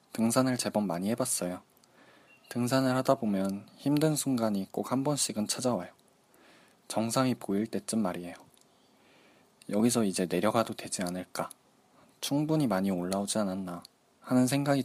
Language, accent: Korean, native